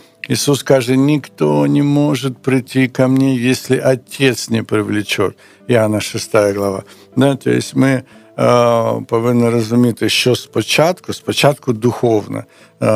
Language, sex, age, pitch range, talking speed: Ukrainian, male, 60-79, 110-140 Hz, 105 wpm